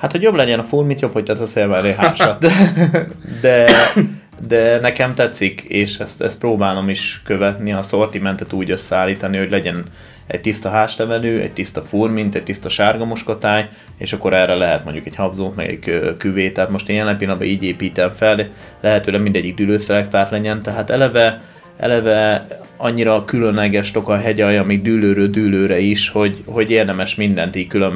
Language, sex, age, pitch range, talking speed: Hungarian, male, 20-39, 95-110 Hz, 170 wpm